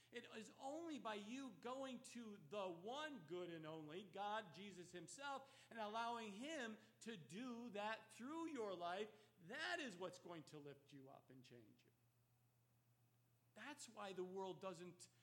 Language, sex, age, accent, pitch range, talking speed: English, male, 50-69, American, 140-235 Hz, 160 wpm